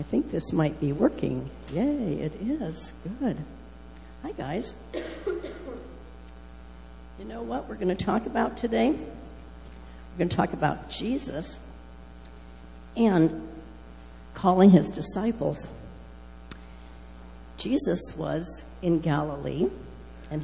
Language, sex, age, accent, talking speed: English, female, 60-79, American, 105 wpm